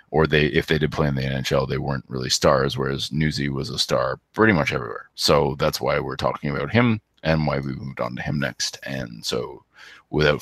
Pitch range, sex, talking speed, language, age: 70-85 Hz, male, 225 wpm, English, 30-49